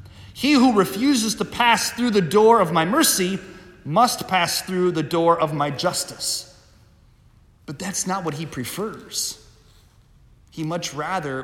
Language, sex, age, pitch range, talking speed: English, male, 30-49, 115-185 Hz, 145 wpm